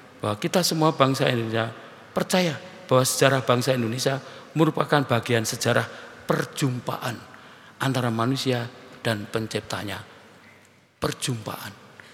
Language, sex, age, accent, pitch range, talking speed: Indonesian, male, 50-69, native, 110-135 Hz, 95 wpm